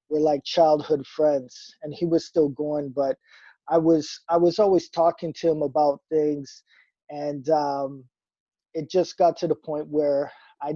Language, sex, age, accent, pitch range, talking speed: English, male, 20-39, American, 145-165 Hz, 165 wpm